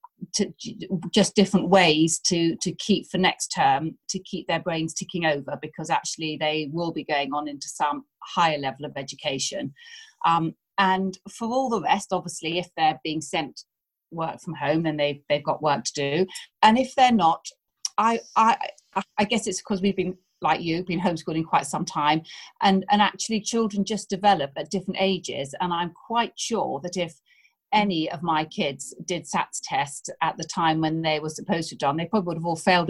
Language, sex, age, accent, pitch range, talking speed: English, female, 40-59, British, 165-205 Hz, 195 wpm